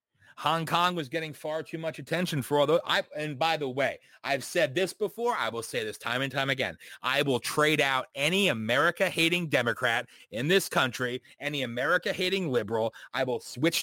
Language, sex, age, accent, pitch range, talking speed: English, male, 30-49, American, 130-185 Hz, 185 wpm